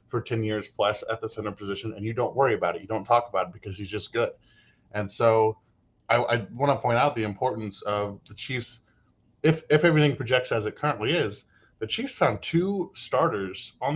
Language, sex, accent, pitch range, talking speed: English, male, American, 105-130 Hz, 215 wpm